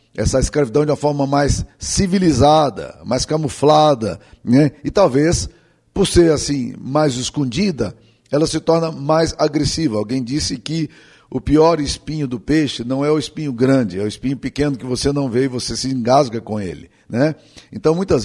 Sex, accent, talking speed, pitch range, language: male, Brazilian, 170 wpm, 135-160 Hz, Portuguese